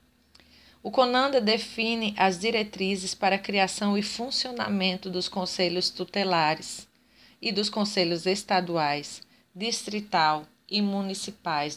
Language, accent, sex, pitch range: Portuguese, Brazilian, female, 170-210 Hz